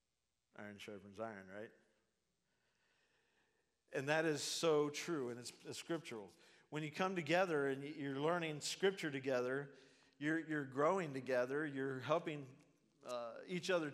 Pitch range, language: 145-185 Hz, English